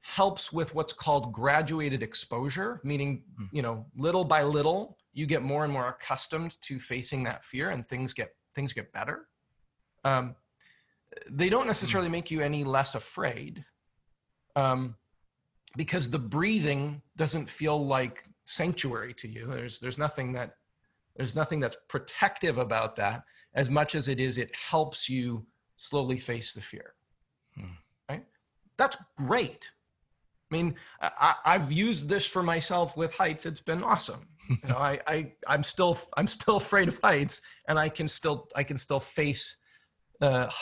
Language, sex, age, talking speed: English, male, 40-59, 155 wpm